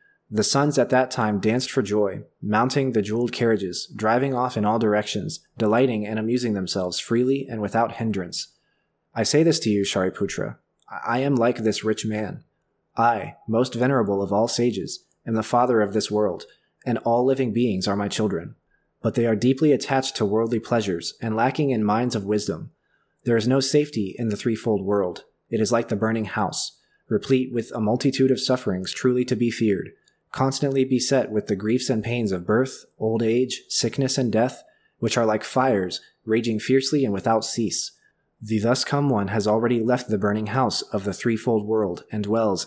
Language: English